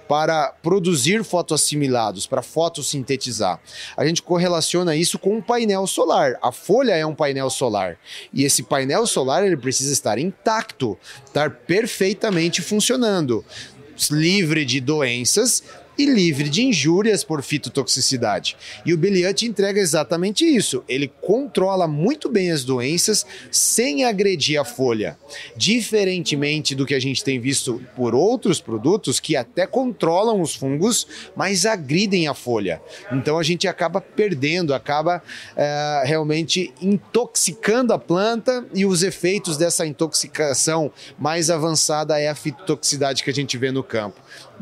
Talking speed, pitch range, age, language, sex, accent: 135 wpm, 145-190 Hz, 30-49, Portuguese, male, Brazilian